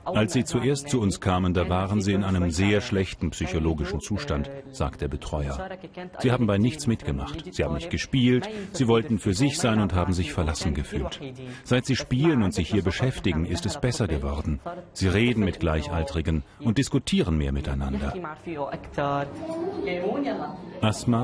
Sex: male